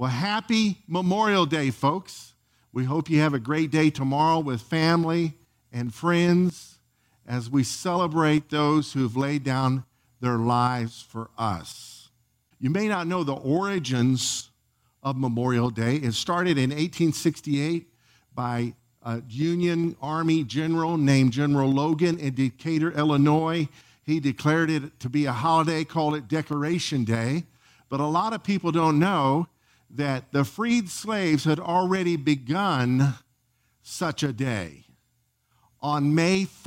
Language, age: English, 50-69